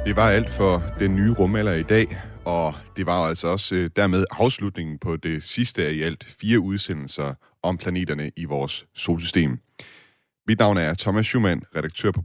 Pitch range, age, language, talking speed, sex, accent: 80-100 Hz, 30-49, Danish, 175 wpm, male, native